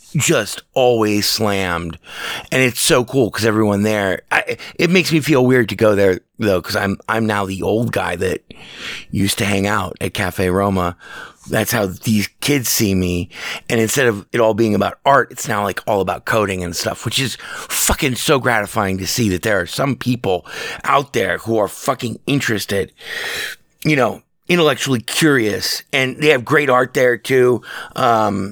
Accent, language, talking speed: American, English, 180 wpm